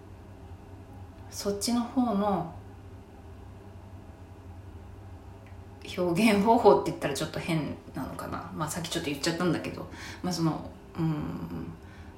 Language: Japanese